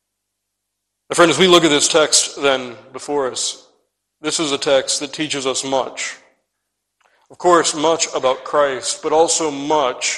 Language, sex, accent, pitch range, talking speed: English, male, American, 130-155 Hz, 160 wpm